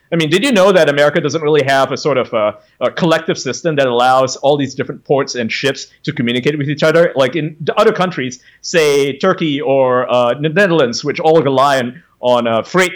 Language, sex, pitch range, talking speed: English, male, 150-195 Hz, 215 wpm